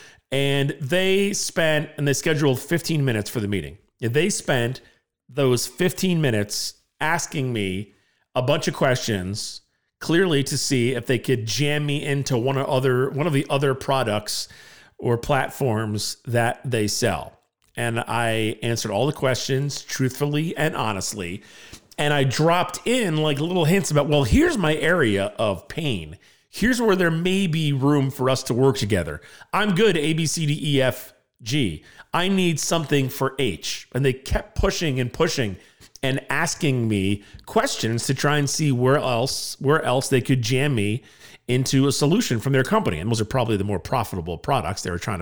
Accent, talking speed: American, 175 wpm